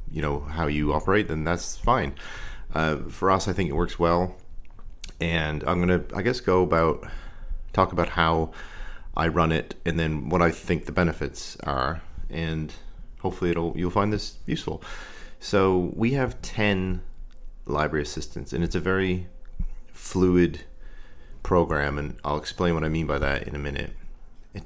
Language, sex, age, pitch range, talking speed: English, male, 30-49, 75-90 Hz, 165 wpm